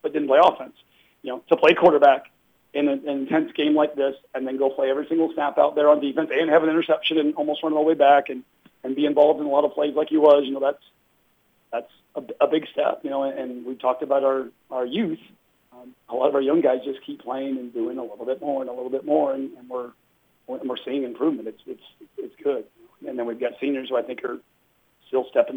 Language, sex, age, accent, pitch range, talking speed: English, male, 40-59, American, 130-150 Hz, 255 wpm